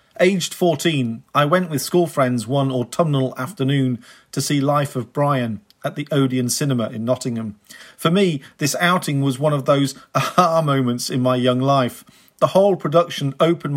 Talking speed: 170 wpm